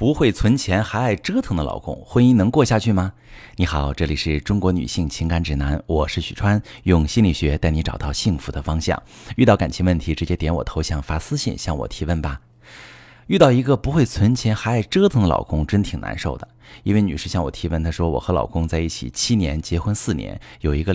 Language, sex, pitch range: Chinese, male, 85-120 Hz